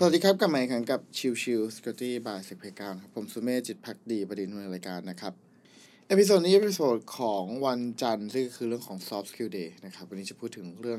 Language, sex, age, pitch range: Thai, male, 20-39, 115-145 Hz